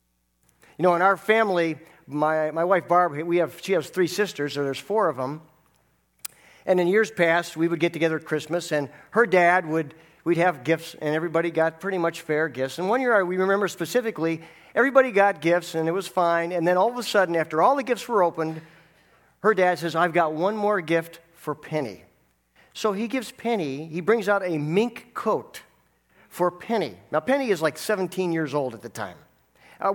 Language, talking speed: English, 200 wpm